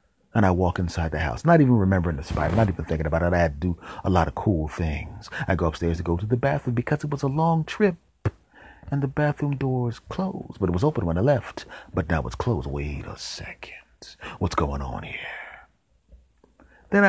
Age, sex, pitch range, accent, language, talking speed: 30-49, male, 90-115 Hz, American, English, 220 wpm